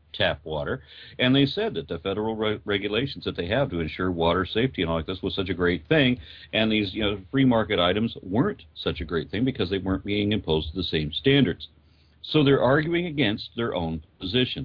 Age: 50-69